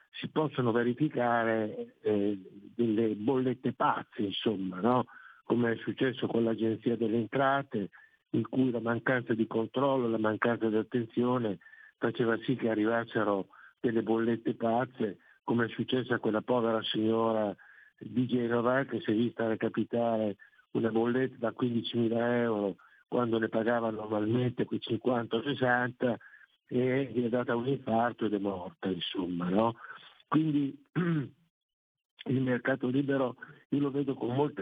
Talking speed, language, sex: 140 wpm, Italian, male